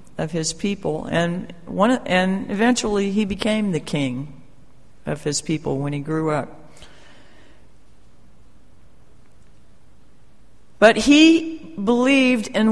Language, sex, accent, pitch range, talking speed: English, female, American, 165-230 Hz, 105 wpm